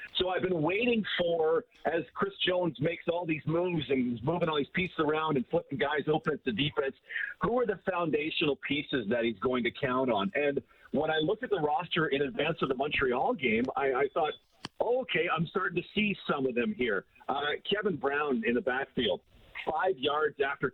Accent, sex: American, male